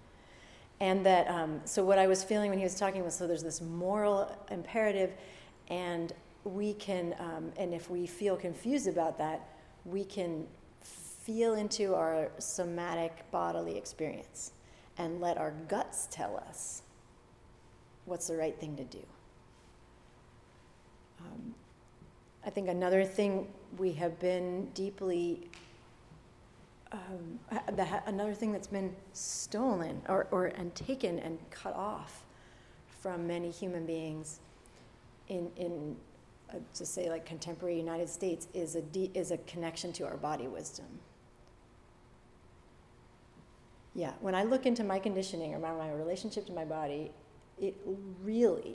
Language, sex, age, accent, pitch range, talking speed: English, female, 40-59, American, 165-195 Hz, 135 wpm